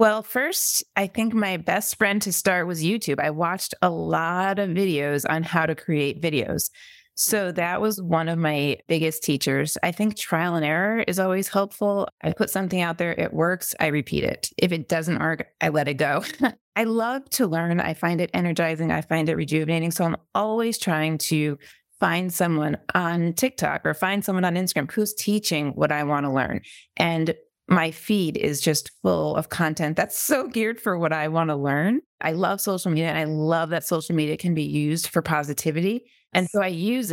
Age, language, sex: 30-49, English, female